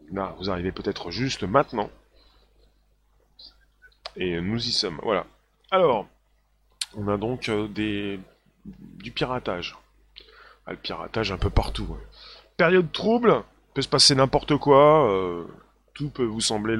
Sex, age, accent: male, 30-49, French